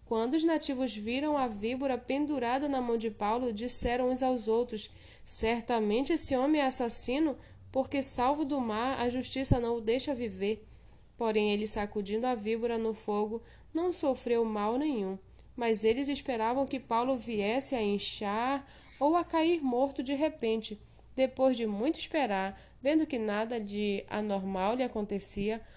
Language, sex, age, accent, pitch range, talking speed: Portuguese, female, 10-29, Brazilian, 215-270 Hz, 155 wpm